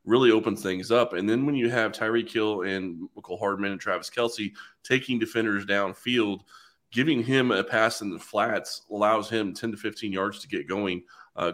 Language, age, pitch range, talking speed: English, 30-49, 100-120 Hz, 195 wpm